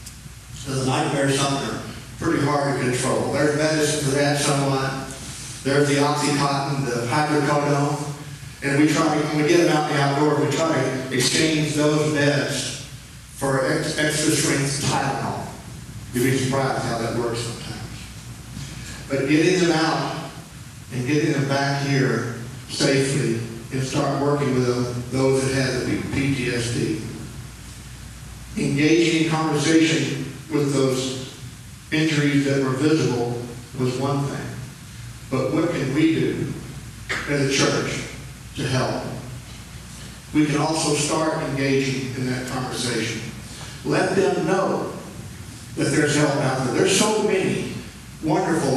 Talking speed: 135 wpm